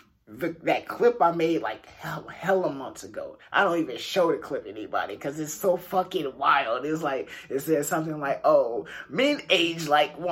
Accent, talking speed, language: American, 190 wpm, English